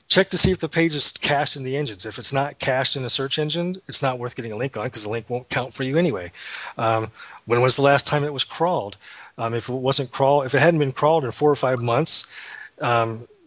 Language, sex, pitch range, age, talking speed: English, male, 115-140 Hz, 30-49, 265 wpm